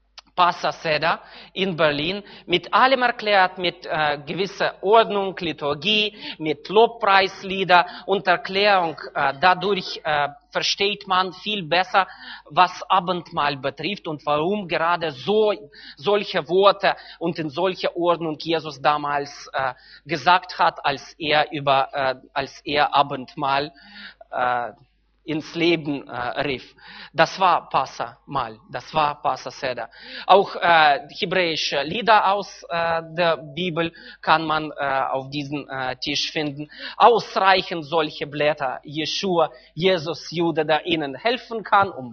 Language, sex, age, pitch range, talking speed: German, male, 30-49, 150-190 Hz, 125 wpm